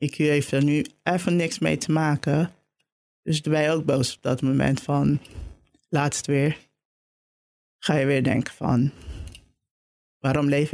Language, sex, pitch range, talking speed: Dutch, male, 135-160 Hz, 150 wpm